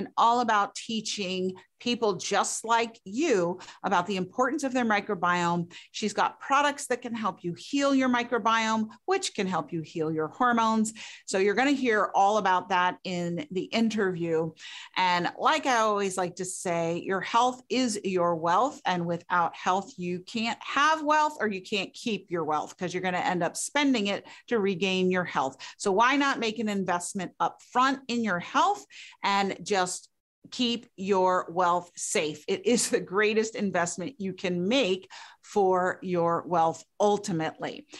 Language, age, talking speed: English, 40-59, 170 wpm